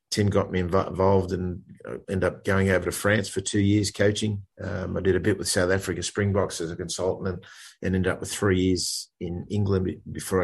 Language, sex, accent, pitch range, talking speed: English, male, Australian, 90-100 Hz, 215 wpm